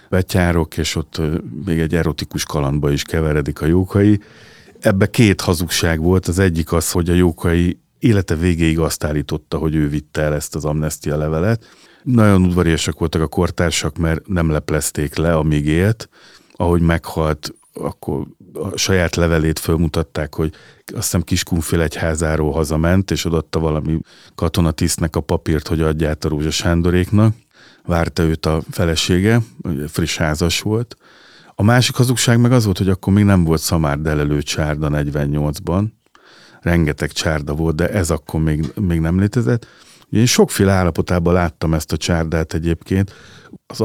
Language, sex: Hungarian, male